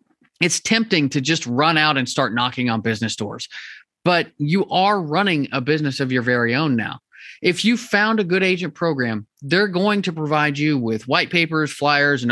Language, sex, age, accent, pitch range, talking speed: English, male, 30-49, American, 140-200 Hz, 195 wpm